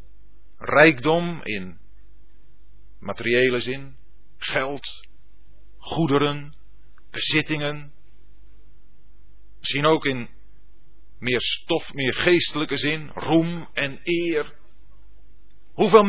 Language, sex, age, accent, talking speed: Dutch, male, 40-59, Dutch, 70 wpm